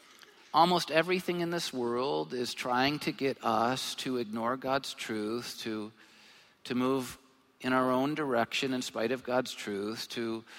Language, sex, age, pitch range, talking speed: English, male, 50-69, 115-135 Hz, 155 wpm